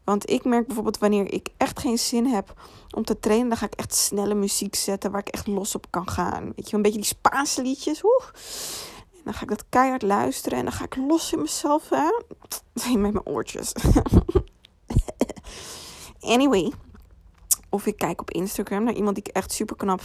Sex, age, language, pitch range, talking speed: female, 20-39, Dutch, 195-235 Hz, 200 wpm